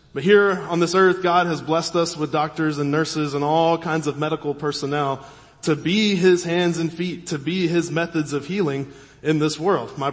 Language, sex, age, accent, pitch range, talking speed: English, male, 20-39, American, 145-185 Hz, 205 wpm